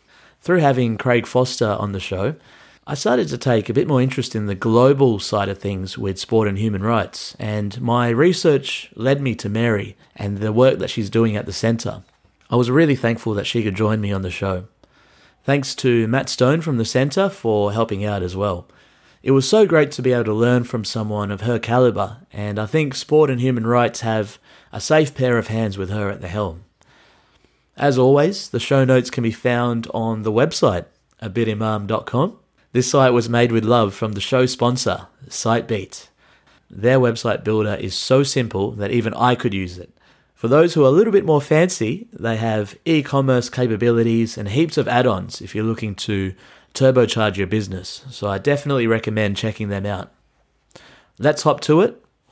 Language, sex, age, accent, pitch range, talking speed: English, male, 30-49, Australian, 105-130 Hz, 195 wpm